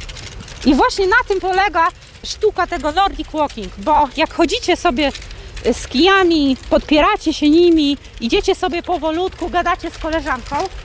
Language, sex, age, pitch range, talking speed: Polish, female, 30-49, 320-400 Hz, 135 wpm